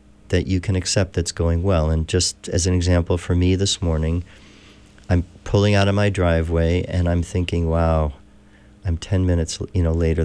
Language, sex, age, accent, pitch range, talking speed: English, male, 40-59, American, 85-100 Hz, 185 wpm